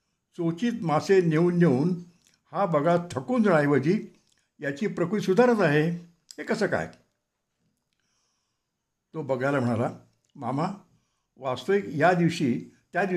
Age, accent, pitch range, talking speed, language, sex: 60-79, native, 135-180 Hz, 50 wpm, Marathi, male